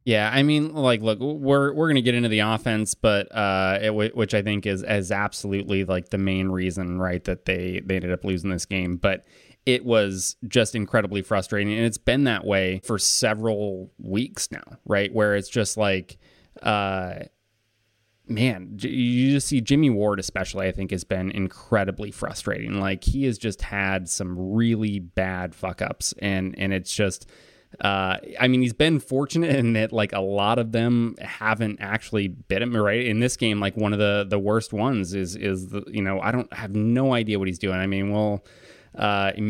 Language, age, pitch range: English, 20-39, 95-115 Hz